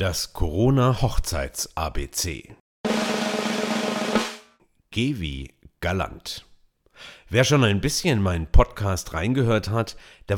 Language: German